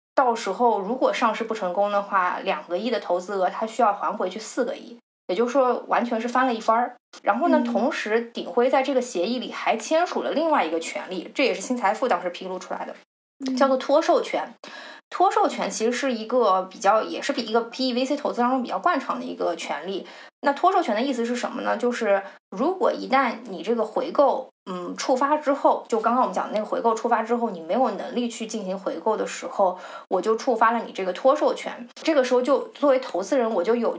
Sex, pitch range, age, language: female, 220-275 Hz, 20-39, Chinese